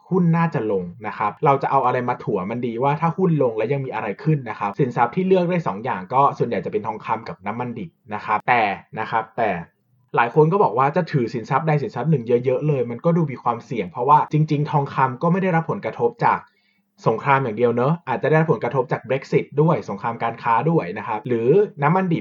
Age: 20-39